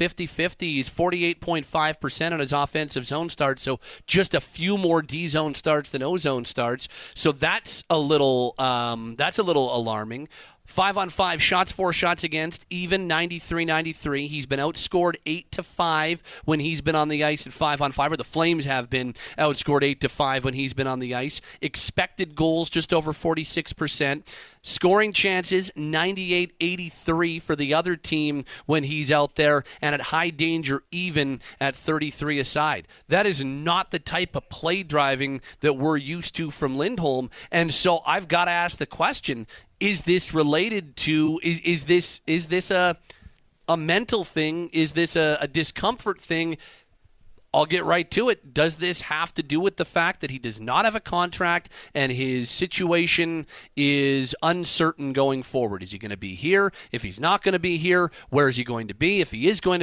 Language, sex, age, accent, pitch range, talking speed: English, male, 40-59, American, 140-175 Hz, 190 wpm